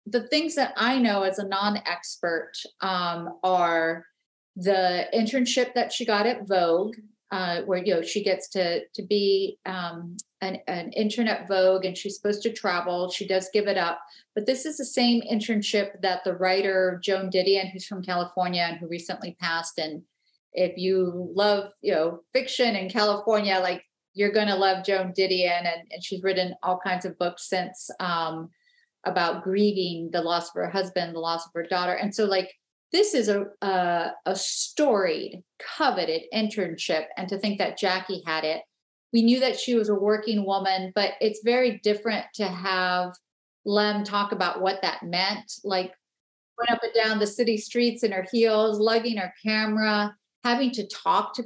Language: English